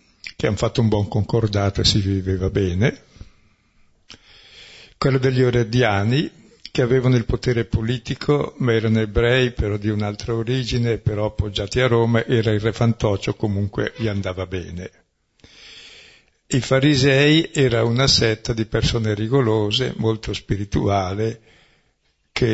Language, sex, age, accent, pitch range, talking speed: Italian, male, 60-79, native, 100-125 Hz, 130 wpm